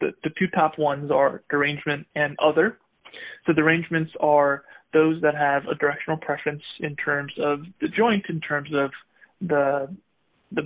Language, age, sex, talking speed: English, 20-39, male, 160 wpm